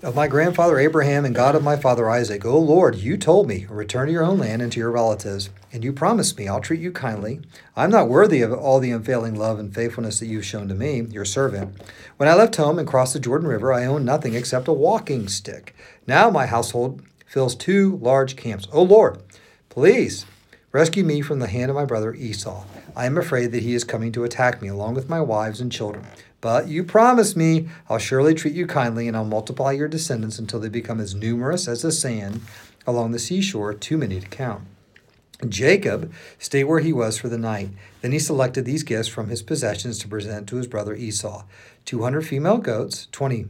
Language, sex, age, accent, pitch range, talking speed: English, male, 40-59, American, 115-150 Hz, 220 wpm